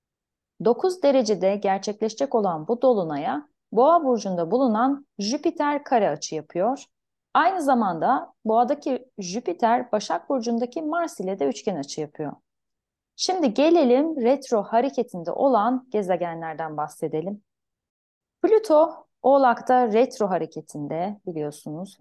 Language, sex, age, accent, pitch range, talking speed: Turkish, female, 30-49, native, 195-275 Hz, 100 wpm